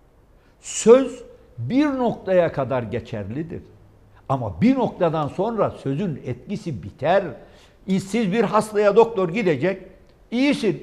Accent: native